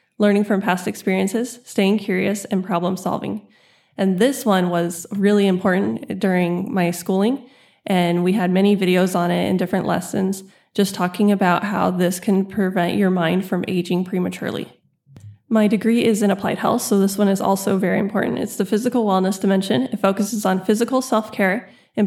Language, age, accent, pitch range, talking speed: English, 20-39, American, 190-215 Hz, 175 wpm